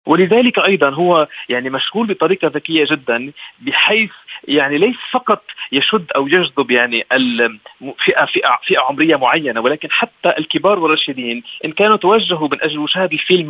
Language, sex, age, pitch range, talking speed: Arabic, male, 40-59, 150-215 Hz, 140 wpm